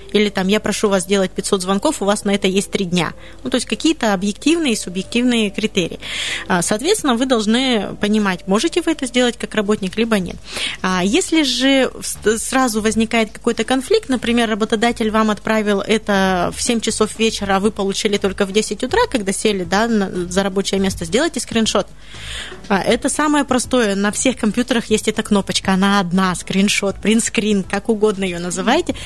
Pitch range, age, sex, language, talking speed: 200-245 Hz, 20-39, female, Russian, 165 wpm